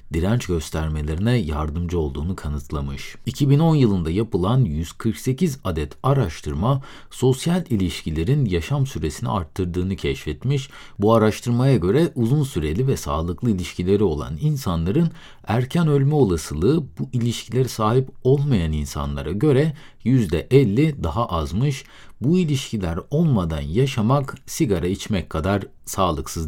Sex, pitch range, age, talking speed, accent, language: male, 80-135 Hz, 50-69, 105 wpm, native, Turkish